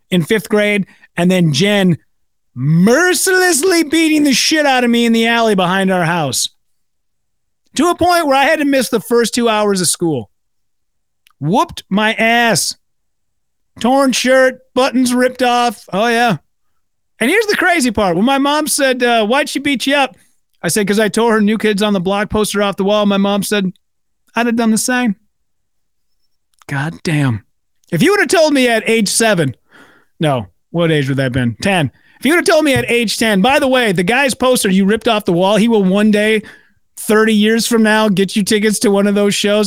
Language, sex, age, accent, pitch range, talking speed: English, male, 40-59, American, 185-260 Hz, 205 wpm